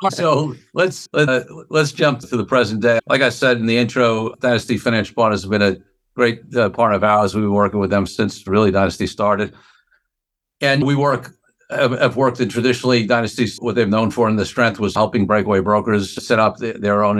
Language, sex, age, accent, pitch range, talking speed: English, male, 60-79, American, 100-115 Hz, 210 wpm